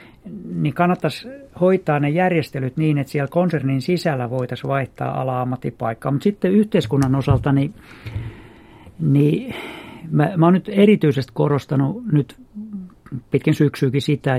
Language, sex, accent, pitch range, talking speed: Finnish, male, native, 130-170 Hz, 115 wpm